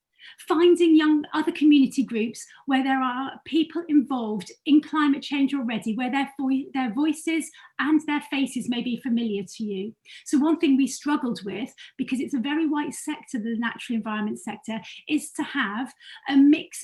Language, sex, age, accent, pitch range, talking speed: English, female, 30-49, British, 225-280 Hz, 165 wpm